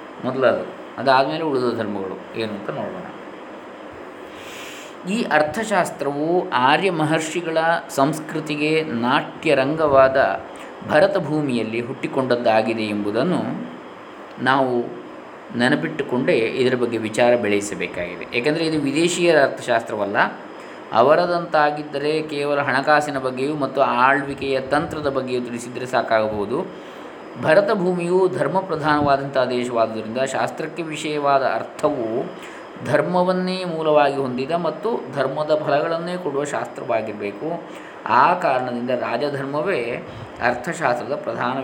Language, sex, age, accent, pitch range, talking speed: Kannada, male, 20-39, native, 125-160 Hz, 80 wpm